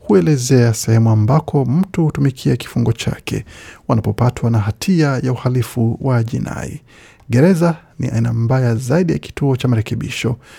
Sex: male